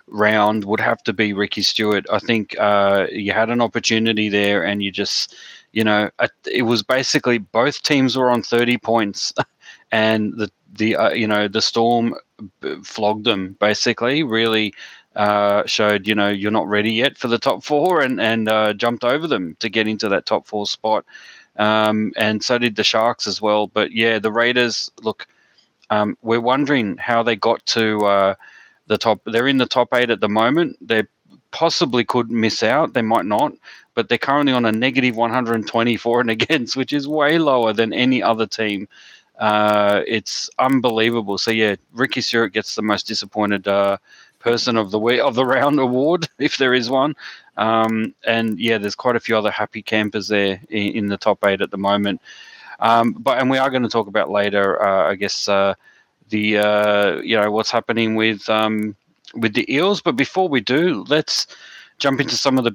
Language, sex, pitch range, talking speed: English, male, 105-120 Hz, 190 wpm